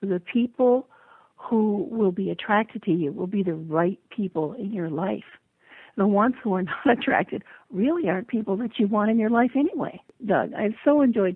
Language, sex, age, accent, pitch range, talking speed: English, female, 50-69, American, 185-220 Hz, 190 wpm